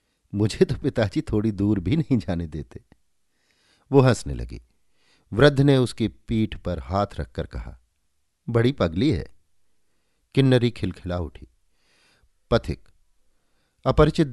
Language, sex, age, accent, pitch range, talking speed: Hindi, male, 50-69, native, 80-120 Hz, 115 wpm